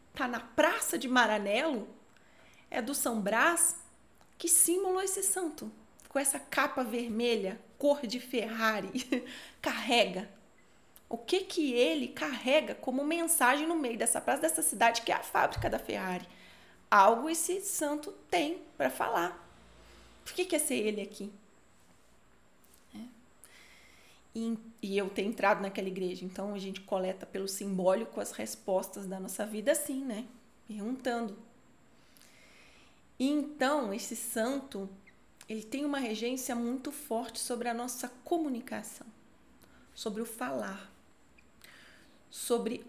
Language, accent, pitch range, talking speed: Portuguese, Brazilian, 215-275 Hz, 125 wpm